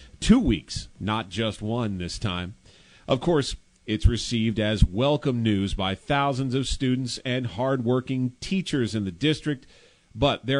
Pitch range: 110-145 Hz